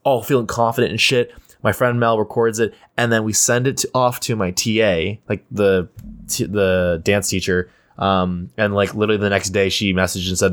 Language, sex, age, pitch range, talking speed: English, male, 20-39, 95-115 Hz, 205 wpm